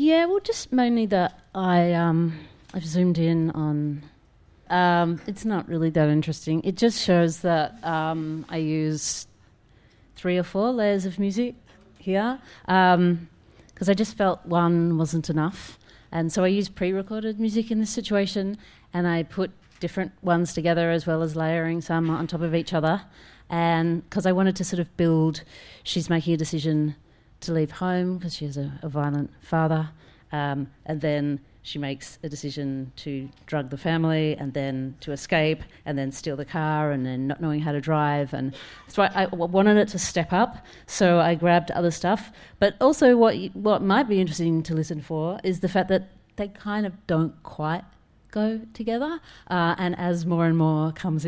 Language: English